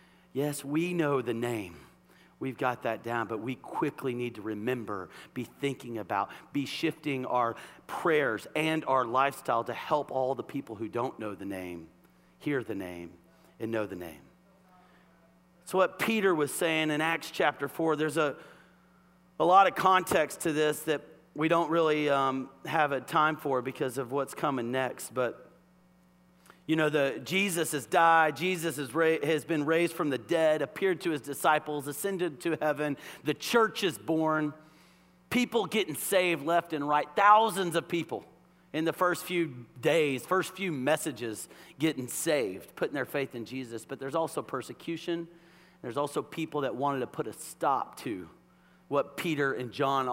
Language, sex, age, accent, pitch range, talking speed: English, male, 40-59, American, 120-165 Hz, 170 wpm